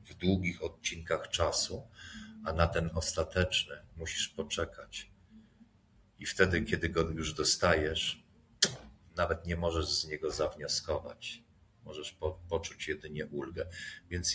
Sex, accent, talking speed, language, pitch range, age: male, native, 115 wpm, Polish, 85-110 Hz, 50-69